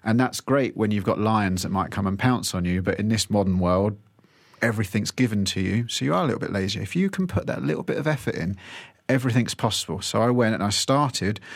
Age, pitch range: 30-49, 105-135 Hz